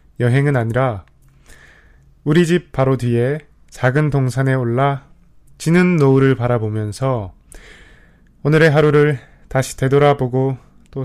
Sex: male